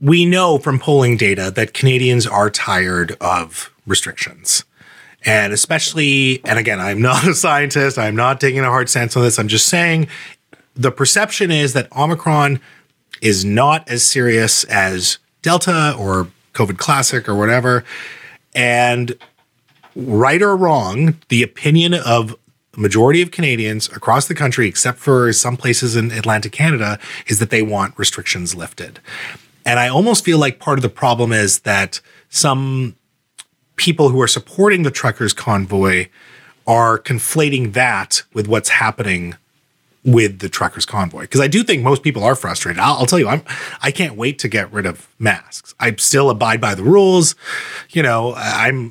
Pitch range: 110-150 Hz